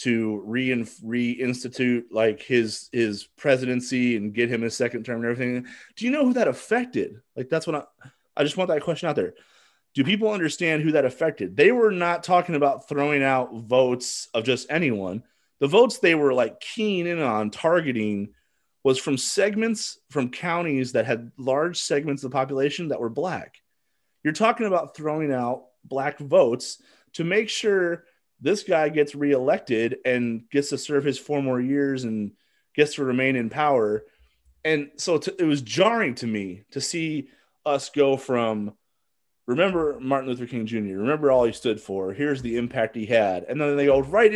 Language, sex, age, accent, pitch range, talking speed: English, male, 30-49, American, 125-195 Hz, 180 wpm